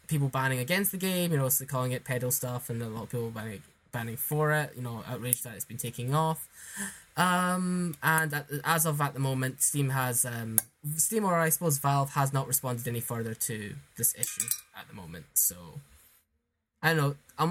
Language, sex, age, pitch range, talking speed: English, male, 10-29, 125-160 Hz, 205 wpm